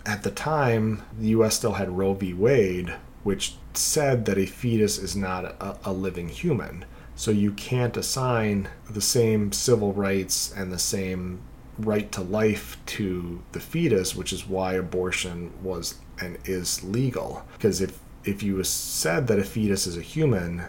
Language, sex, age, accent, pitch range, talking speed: English, male, 30-49, American, 95-115 Hz, 165 wpm